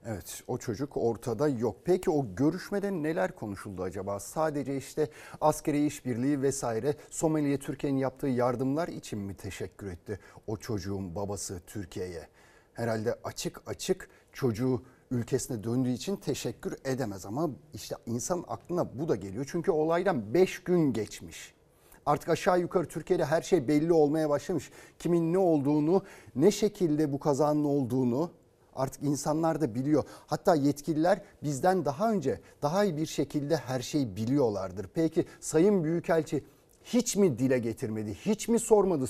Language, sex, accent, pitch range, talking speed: Turkish, male, native, 125-165 Hz, 140 wpm